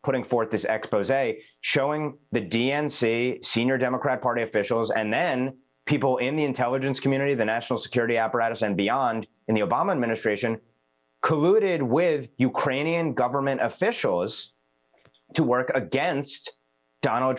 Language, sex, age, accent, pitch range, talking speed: English, male, 30-49, American, 105-130 Hz, 130 wpm